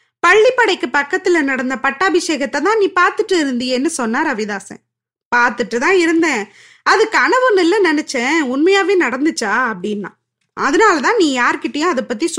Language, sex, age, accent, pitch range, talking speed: Tamil, female, 20-39, native, 255-375 Hz, 100 wpm